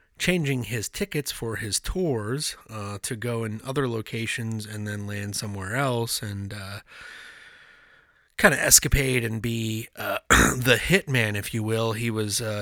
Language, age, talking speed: English, 30-49, 150 wpm